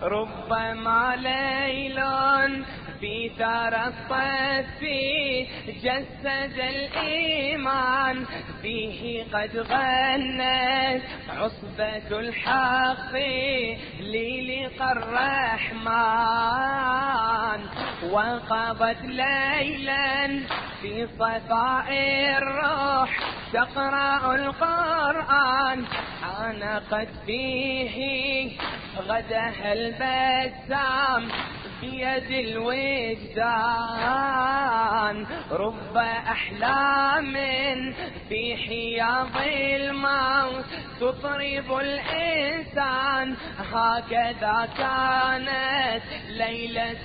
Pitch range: 230-270 Hz